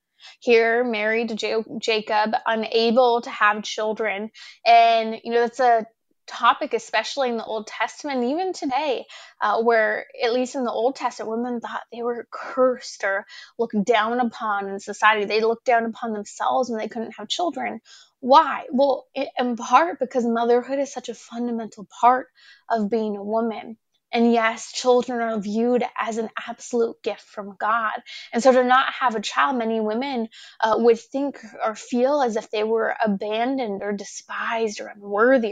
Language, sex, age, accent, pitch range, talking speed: English, female, 20-39, American, 220-255 Hz, 165 wpm